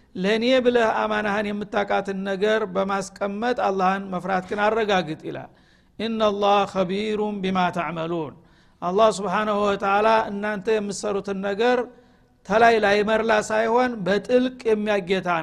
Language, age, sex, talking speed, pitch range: Amharic, 50-69, male, 95 wpm, 195-225 Hz